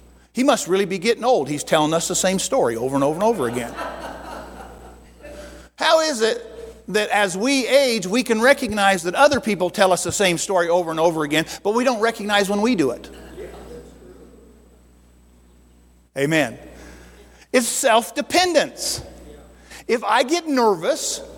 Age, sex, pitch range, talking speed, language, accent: 50-69, male, 165-260 Hz, 155 wpm, English, American